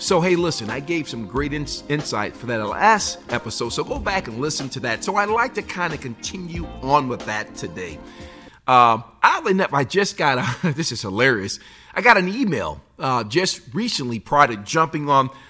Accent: American